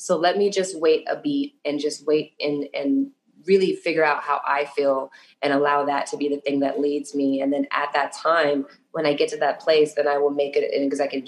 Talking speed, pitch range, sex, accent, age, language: 240 wpm, 140-175 Hz, female, American, 20-39, English